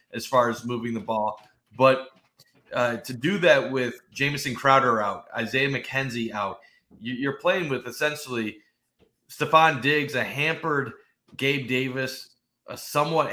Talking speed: 140 wpm